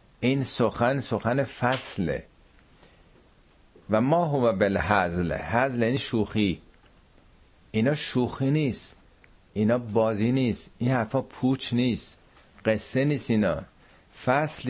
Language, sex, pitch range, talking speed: Persian, male, 90-125 Hz, 105 wpm